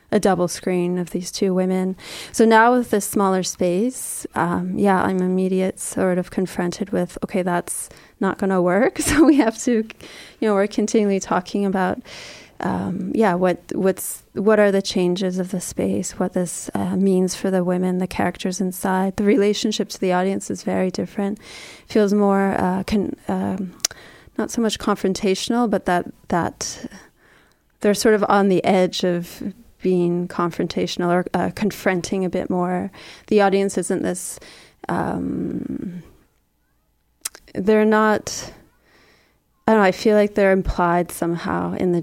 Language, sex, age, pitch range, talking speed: French, female, 20-39, 180-210 Hz, 160 wpm